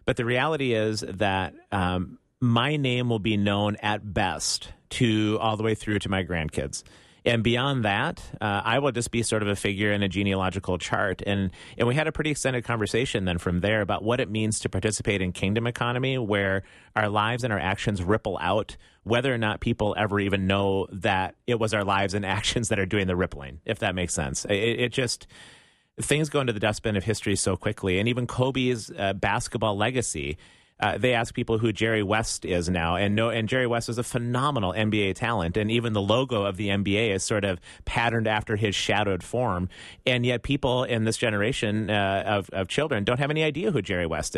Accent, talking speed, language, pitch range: American, 210 wpm, English, 95-120 Hz